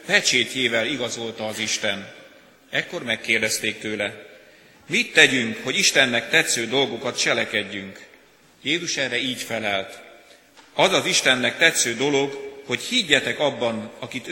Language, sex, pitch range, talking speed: Hungarian, male, 110-130 Hz, 115 wpm